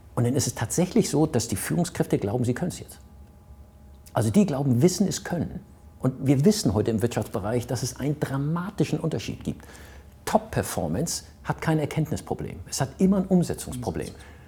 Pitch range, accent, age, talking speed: 90-150 Hz, German, 50-69, 170 wpm